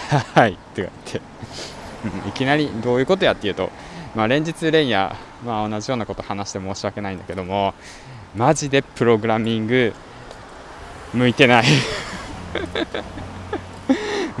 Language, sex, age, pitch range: Japanese, male, 20-39, 95-130 Hz